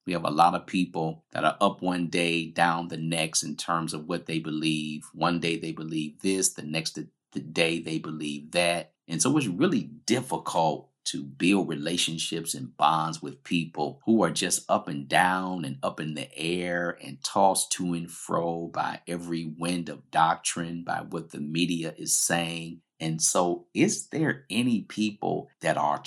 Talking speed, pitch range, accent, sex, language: 180 wpm, 75-85 Hz, American, male, English